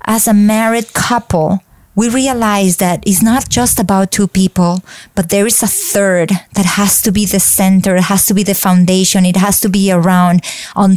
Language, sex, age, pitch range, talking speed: English, female, 30-49, 190-225 Hz, 195 wpm